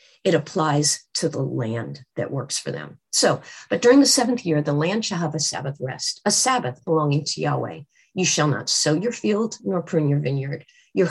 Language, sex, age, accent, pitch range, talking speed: English, female, 40-59, American, 150-200 Hz, 205 wpm